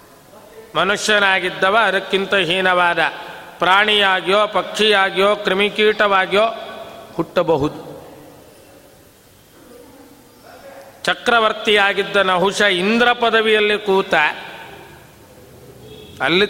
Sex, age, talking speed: male, 50-69, 45 wpm